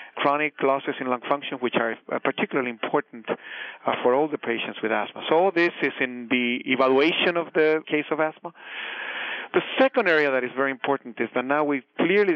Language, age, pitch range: English, 40-59, 120-155 Hz